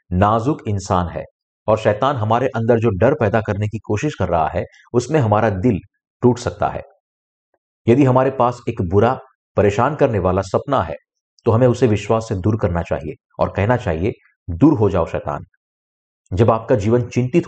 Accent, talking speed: native, 175 wpm